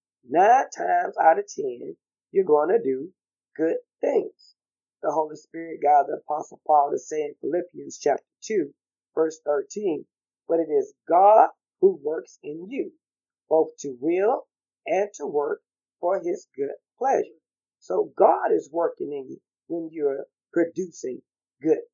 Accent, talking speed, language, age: American, 145 wpm, English, 40-59